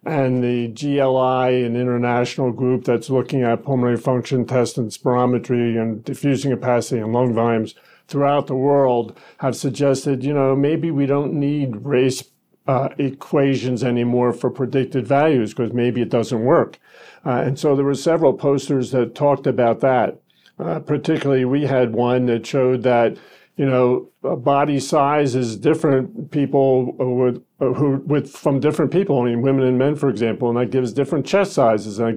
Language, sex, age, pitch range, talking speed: English, male, 50-69, 125-145 Hz, 170 wpm